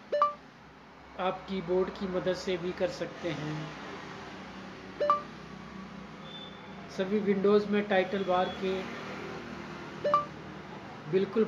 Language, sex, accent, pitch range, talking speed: Hindi, male, native, 185-205 Hz, 85 wpm